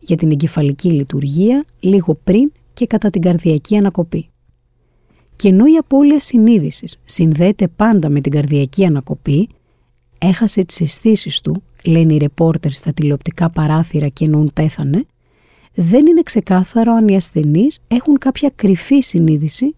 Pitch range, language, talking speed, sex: 155-215 Hz, Greek, 135 wpm, female